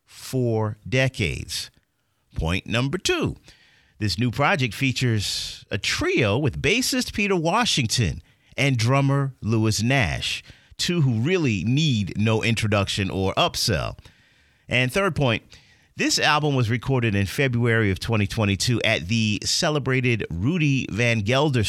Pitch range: 100-145 Hz